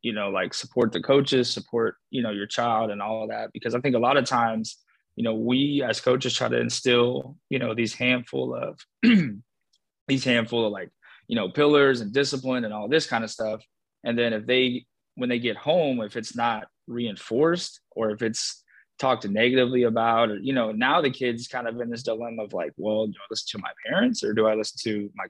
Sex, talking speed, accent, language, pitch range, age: male, 220 wpm, American, English, 110-130 Hz, 20-39